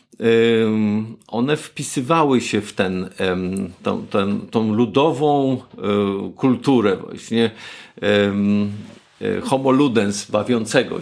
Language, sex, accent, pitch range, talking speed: Polish, male, native, 110-140 Hz, 70 wpm